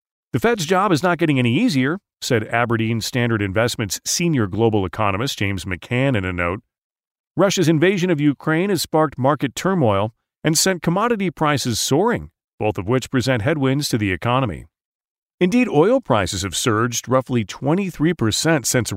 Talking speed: 160 wpm